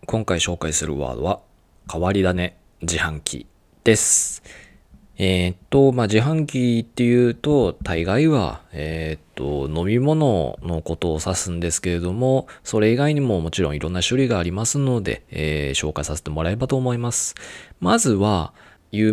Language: Japanese